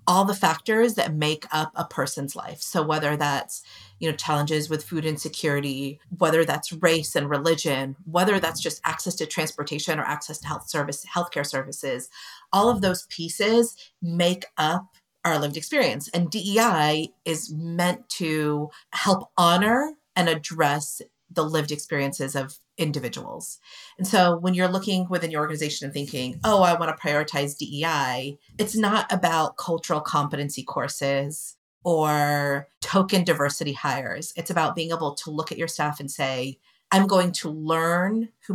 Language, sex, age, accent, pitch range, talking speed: English, female, 40-59, American, 145-180 Hz, 160 wpm